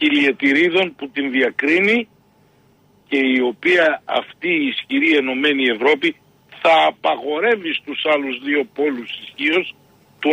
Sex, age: male, 60-79